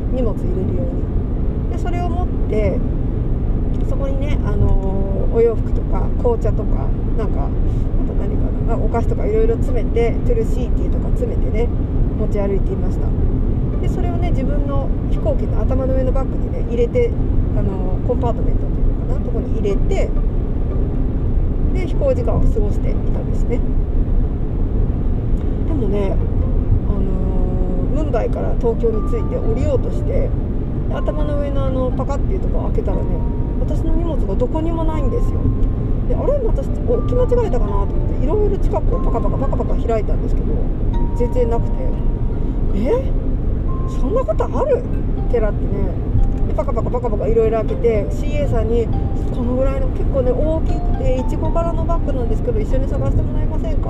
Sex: female